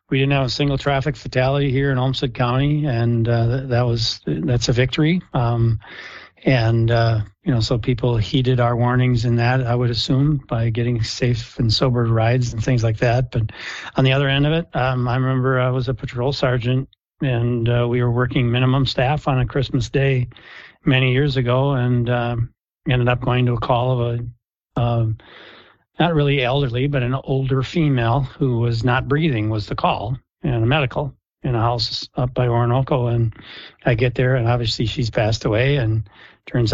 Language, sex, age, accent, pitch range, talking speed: English, male, 40-59, American, 120-135 Hz, 190 wpm